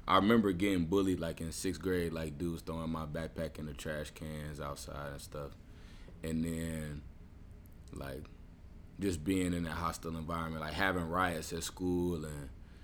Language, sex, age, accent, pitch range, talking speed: English, male, 20-39, American, 80-90 Hz, 165 wpm